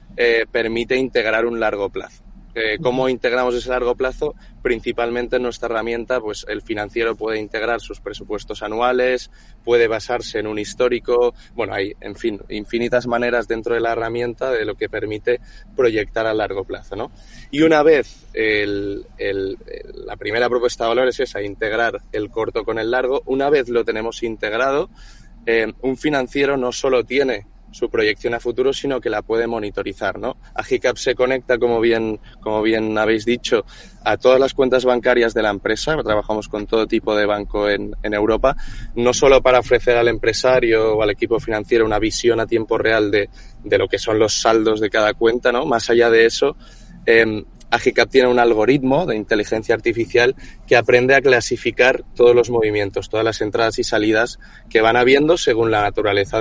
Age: 20-39